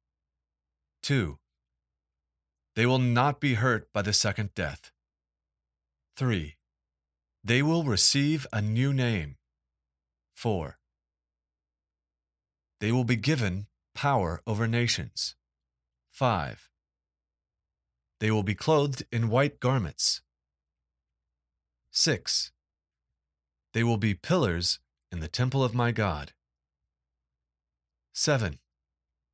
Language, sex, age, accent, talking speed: English, male, 40-59, American, 90 wpm